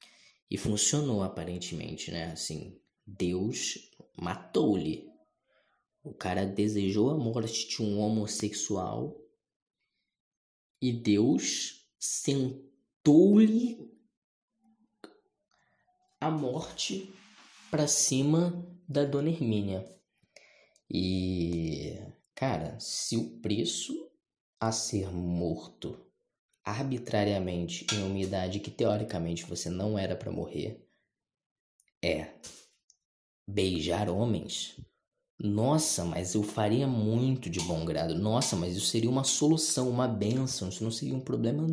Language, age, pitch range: Portuguese, 20-39, 100-155 Hz